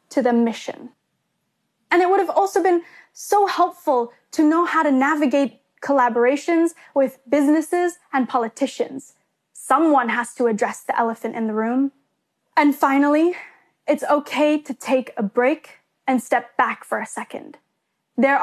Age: 10-29